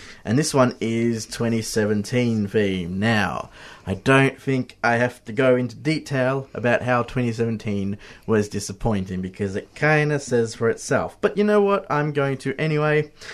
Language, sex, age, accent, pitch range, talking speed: English, male, 30-49, Australian, 105-130 Hz, 160 wpm